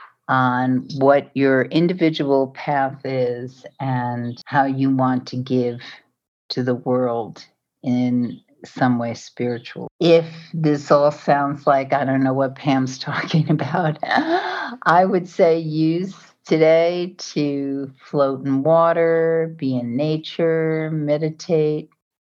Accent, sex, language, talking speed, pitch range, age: American, female, English, 120 wpm, 130-160 Hz, 50-69